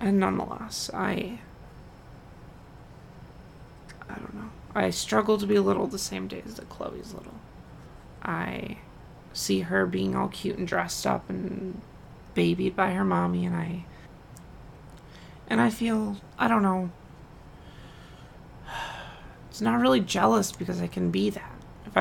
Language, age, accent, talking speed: English, 30-49, American, 135 wpm